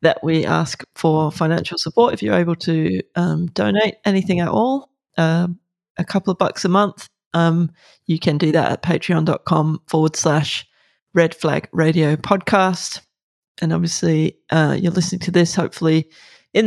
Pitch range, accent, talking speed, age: 160-180 Hz, Australian, 160 wpm, 20-39